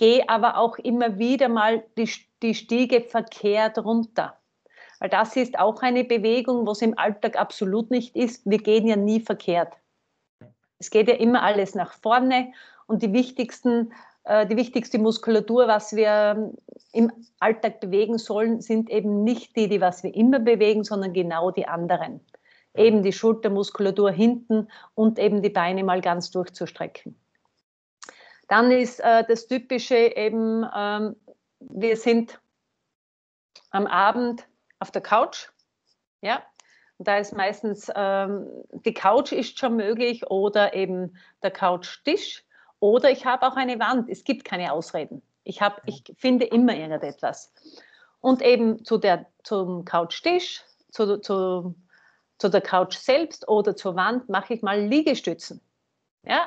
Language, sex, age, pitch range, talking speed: German, female, 40-59, 205-240 Hz, 145 wpm